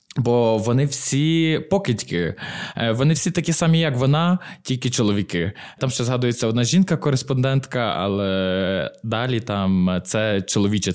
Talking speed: 120 wpm